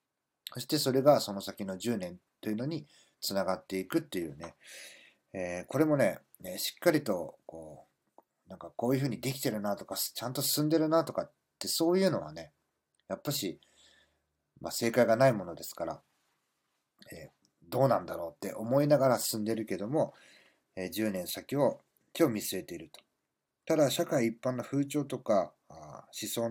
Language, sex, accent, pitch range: Japanese, male, native, 105-140 Hz